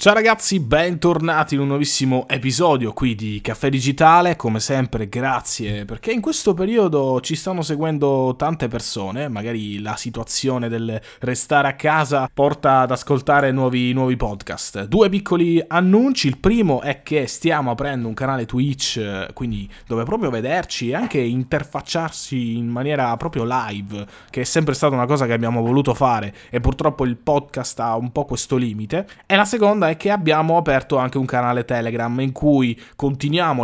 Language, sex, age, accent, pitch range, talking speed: Italian, male, 20-39, native, 120-150 Hz, 160 wpm